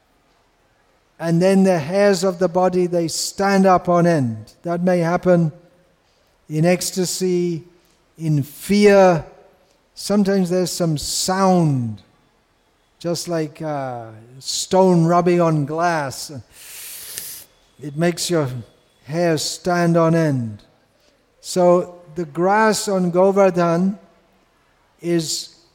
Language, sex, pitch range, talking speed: English, male, 160-185 Hz, 100 wpm